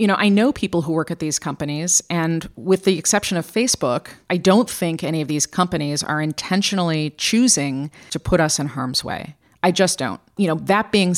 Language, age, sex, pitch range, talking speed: English, 30-49, female, 155-195 Hz, 210 wpm